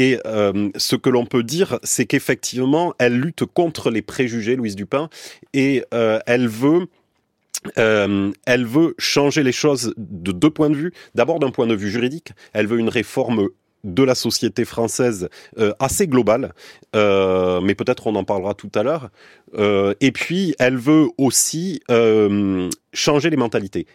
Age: 30-49